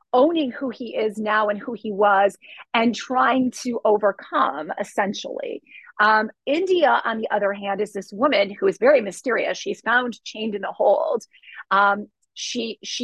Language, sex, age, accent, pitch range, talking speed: English, female, 30-49, American, 210-265 Hz, 160 wpm